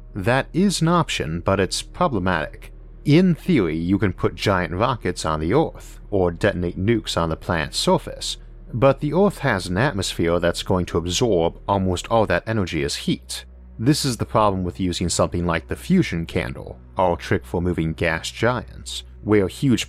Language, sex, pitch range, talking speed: English, male, 85-110 Hz, 180 wpm